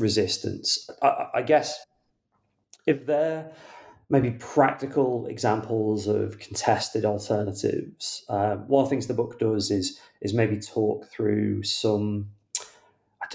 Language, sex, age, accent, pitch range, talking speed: English, male, 30-49, British, 100-115 Hz, 125 wpm